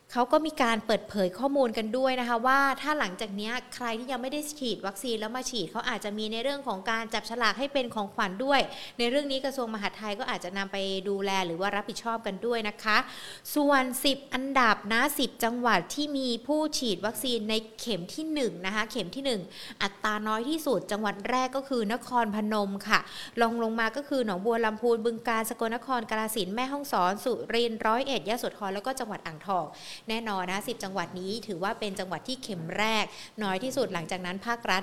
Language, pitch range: Thai, 200-255 Hz